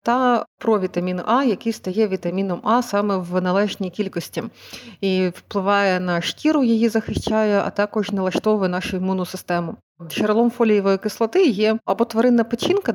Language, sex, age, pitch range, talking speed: Ukrainian, female, 30-49, 190-230 Hz, 140 wpm